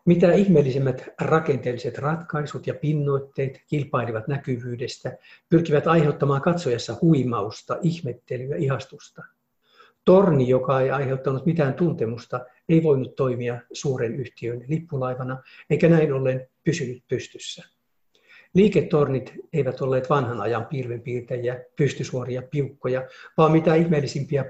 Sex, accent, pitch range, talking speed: male, native, 125-160 Hz, 105 wpm